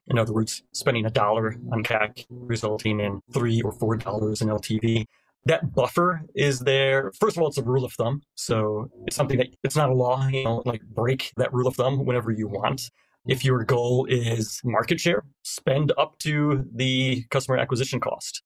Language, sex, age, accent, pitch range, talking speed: English, male, 30-49, American, 115-140 Hz, 195 wpm